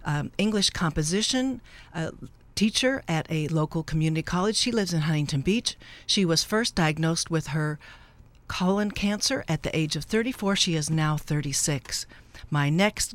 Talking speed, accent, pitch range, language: 155 wpm, American, 155-205 Hz, English